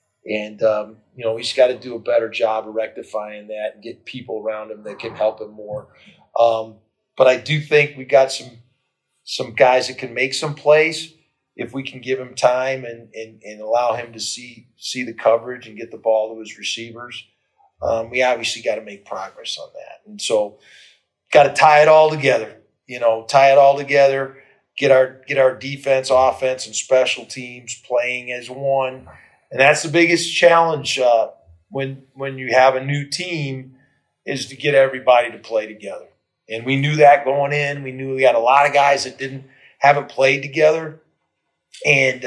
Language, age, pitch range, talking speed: English, 40-59, 115-140 Hz, 195 wpm